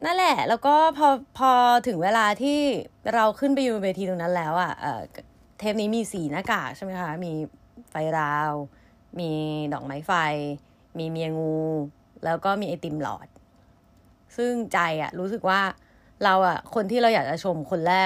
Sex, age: female, 20-39